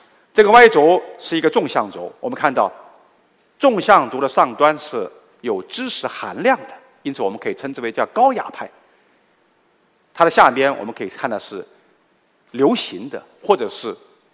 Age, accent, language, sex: 50-69, native, Chinese, male